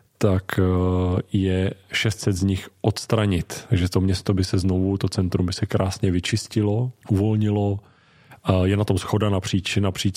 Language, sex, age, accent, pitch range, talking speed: Czech, male, 30-49, native, 95-105 Hz, 150 wpm